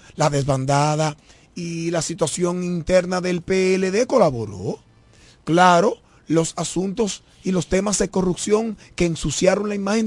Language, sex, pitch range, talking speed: Spanish, male, 140-210 Hz, 125 wpm